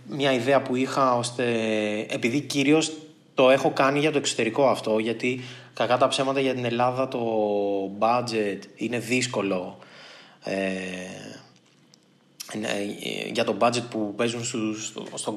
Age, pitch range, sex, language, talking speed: 20-39, 120-150 Hz, male, Greek, 135 wpm